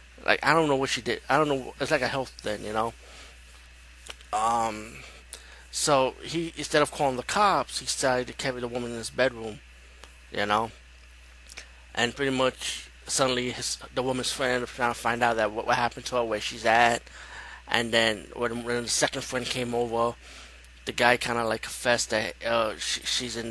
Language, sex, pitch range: English, male, 105-130 Hz